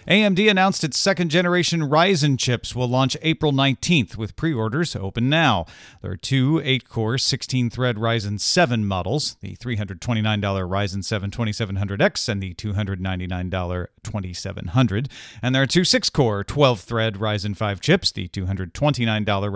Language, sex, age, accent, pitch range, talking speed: English, male, 40-59, American, 105-140 Hz, 125 wpm